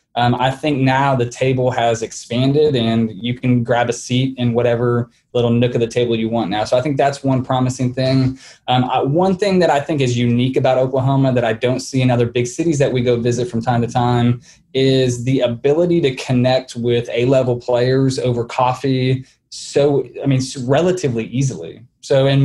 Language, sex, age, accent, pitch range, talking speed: English, male, 20-39, American, 120-135 Hz, 200 wpm